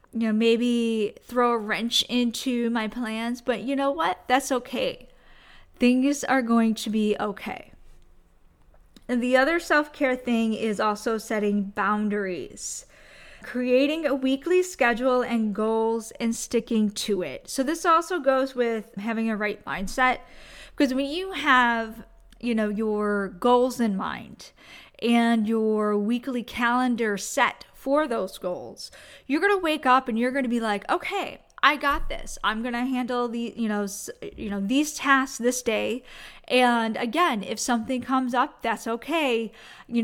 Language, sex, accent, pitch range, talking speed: English, female, American, 215-260 Hz, 150 wpm